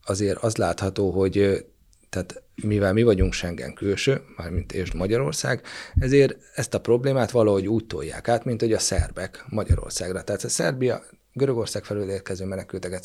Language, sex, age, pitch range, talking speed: Hungarian, male, 30-49, 90-110 Hz, 145 wpm